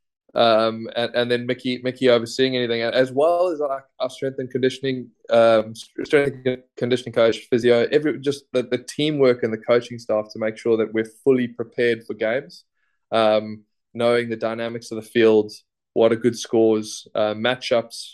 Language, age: English, 20-39